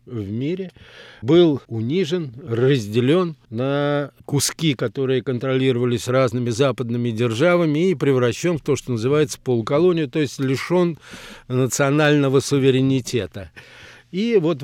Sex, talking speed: male, 105 wpm